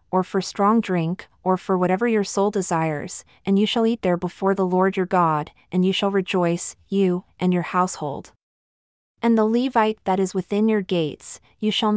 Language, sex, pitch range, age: English, female, 175-210 Hz, 30-49